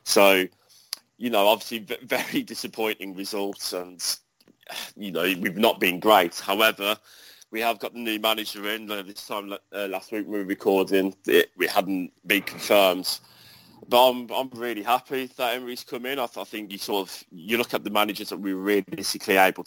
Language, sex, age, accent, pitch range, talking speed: English, male, 30-49, British, 95-115 Hz, 190 wpm